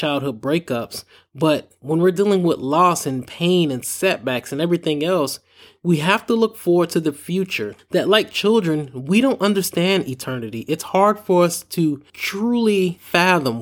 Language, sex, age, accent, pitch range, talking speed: English, male, 20-39, American, 145-190 Hz, 165 wpm